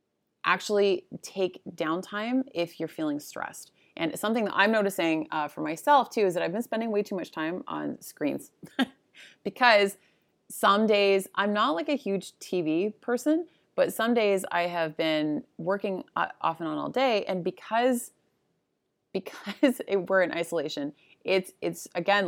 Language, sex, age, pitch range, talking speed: English, female, 30-49, 170-220 Hz, 155 wpm